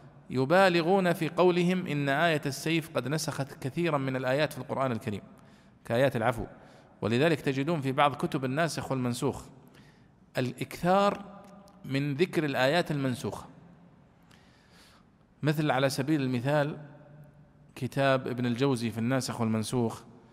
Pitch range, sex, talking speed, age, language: 125-170 Hz, male, 110 wpm, 40-59, Arabic